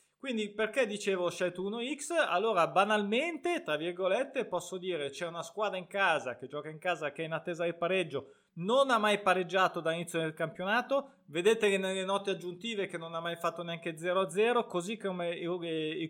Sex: male